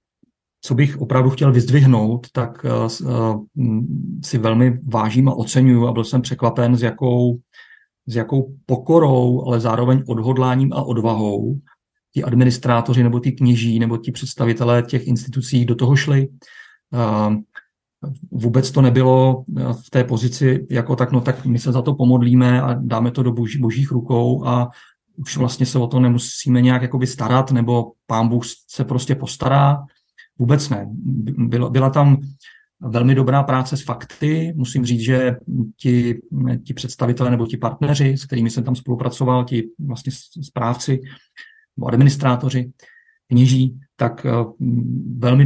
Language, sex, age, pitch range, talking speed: Czech, male, 40-59, 120-130 Hz, 140 wpm